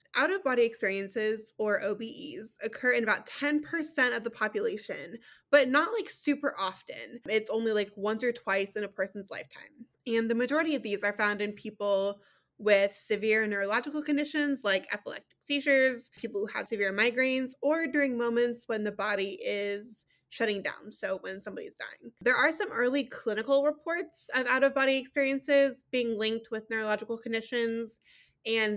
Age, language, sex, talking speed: 20-39, English, female, 160 wpm